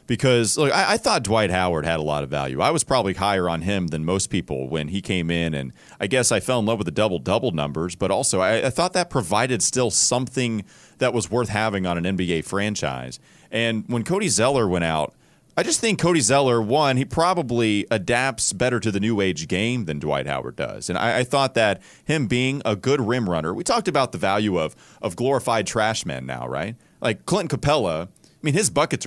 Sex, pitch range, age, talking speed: male, 95-135 Hz, 30-49, 220 wpm